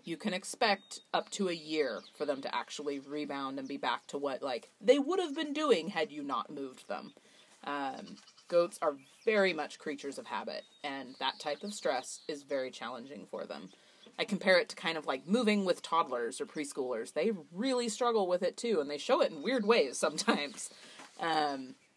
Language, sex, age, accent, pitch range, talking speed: English, female, 30-49, American, 155-205 Hz, 200 wpm